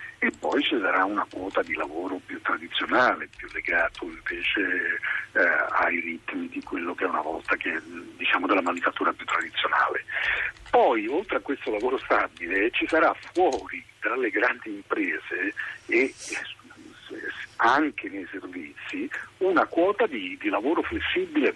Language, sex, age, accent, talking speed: Italian, male, 60-79, native, 145 wpm